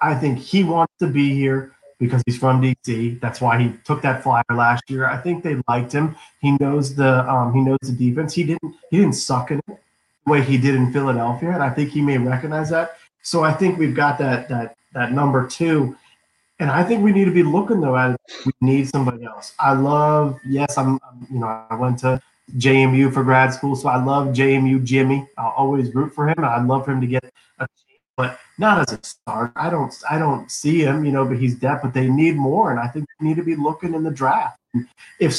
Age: 30-49